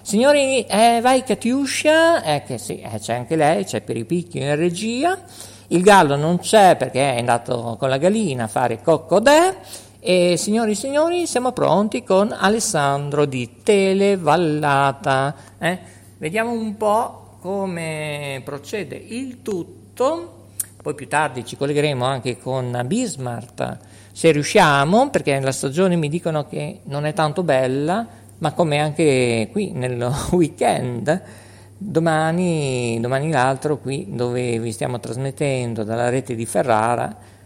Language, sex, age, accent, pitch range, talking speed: Italian, male, 50-69, native, 130-200 Hz, 135 wpm